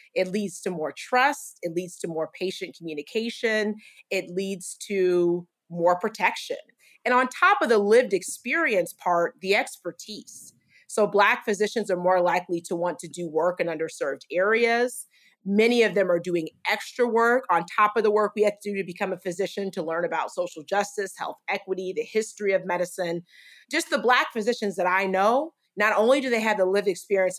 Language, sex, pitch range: English, female, 180-220 Hz